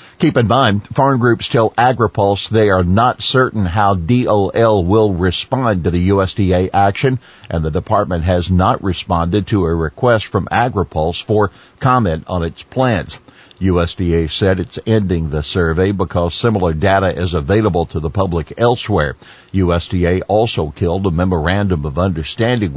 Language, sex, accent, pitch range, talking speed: English, male, American, 90-110 Hz, 150 wpm